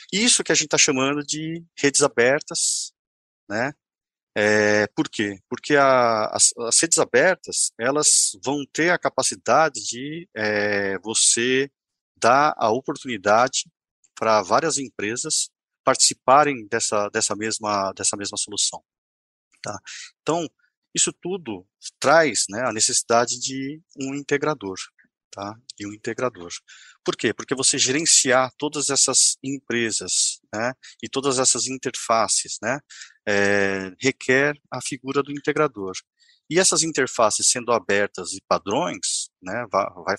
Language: Portuguese